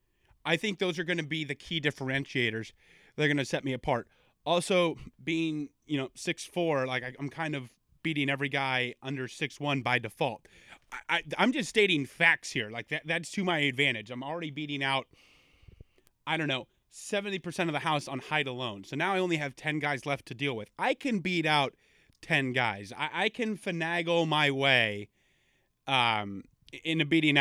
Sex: male